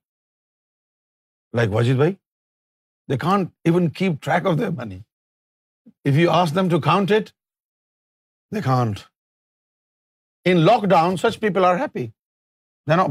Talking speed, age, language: 130 wpm, 50-69, Urdu